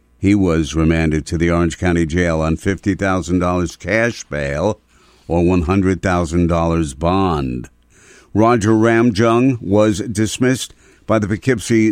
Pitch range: 90-110 Hz